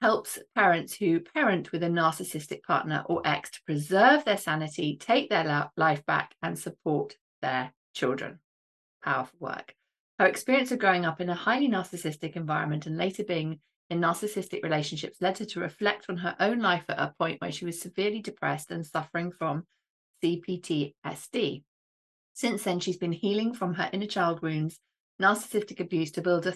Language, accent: English, British